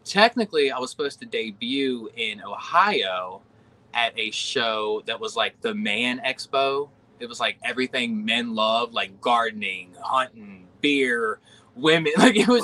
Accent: American